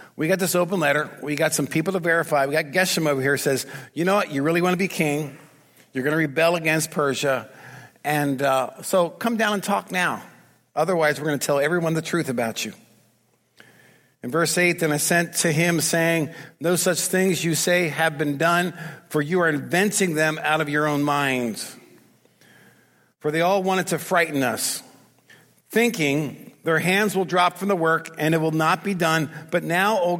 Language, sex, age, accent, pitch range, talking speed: English, male, 50-69, American, 150-190 Hz, 205 wpm